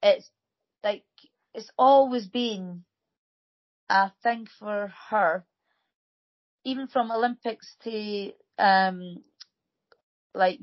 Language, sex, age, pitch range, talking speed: English, female, 30-49, 185-225 Hz, 85 wpm